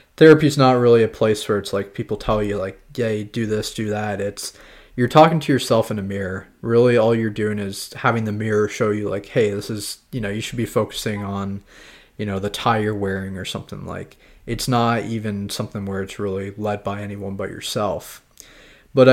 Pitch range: 100-125 Hz